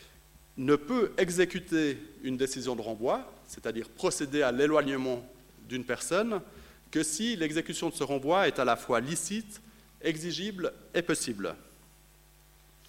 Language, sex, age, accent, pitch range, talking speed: French, male, 30-49, French, 135-185 Hz, 125 wpm